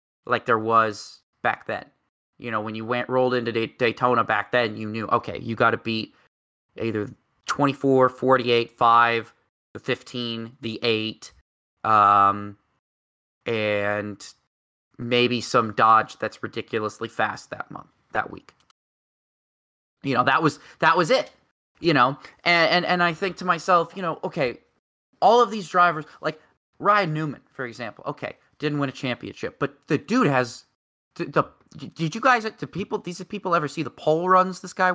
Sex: male